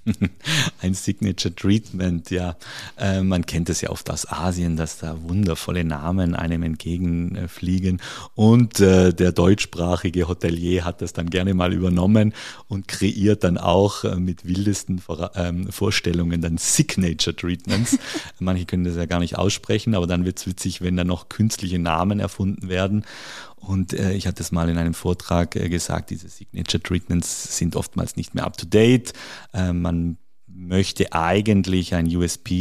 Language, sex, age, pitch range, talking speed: German, male, 50-69, 85-95 Hz, 165 wpm